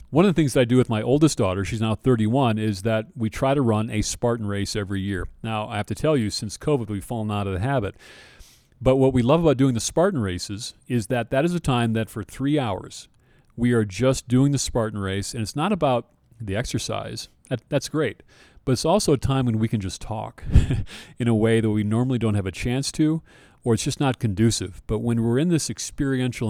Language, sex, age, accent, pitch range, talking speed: English, male, 40-59, American, 105-135 Hz, 240 wpm